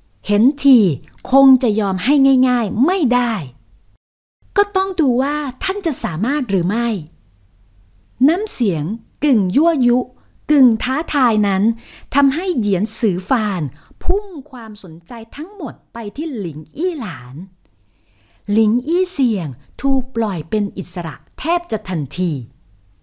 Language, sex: Thai, female